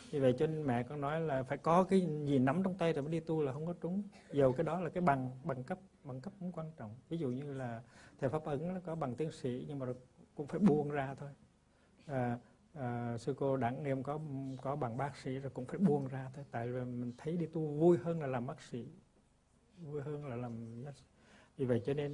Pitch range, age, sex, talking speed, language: 125-160 Hz, 60-79, male, 250 wpm, Vietnamese